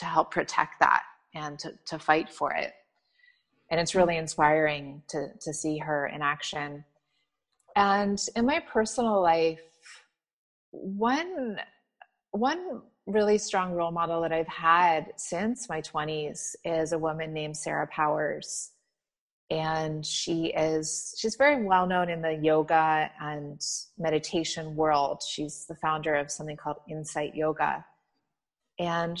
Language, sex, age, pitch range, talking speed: English, female, 30-49, 155-200 Hz, 130 wpm